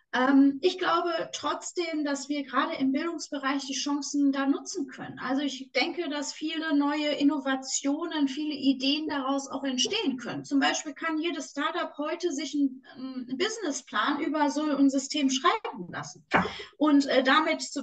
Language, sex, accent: German, female, German